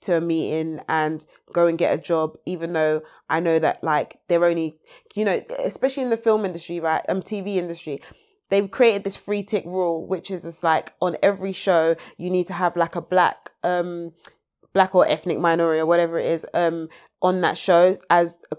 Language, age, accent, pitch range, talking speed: English, 20-39, British, 175-210 Hz, 205 wpm